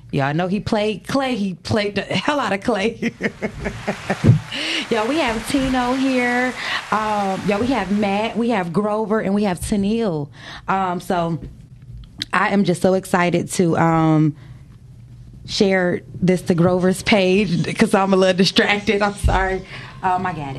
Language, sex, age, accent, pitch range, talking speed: English, female, 20-39, American, 145-210 Hz, 160 wpm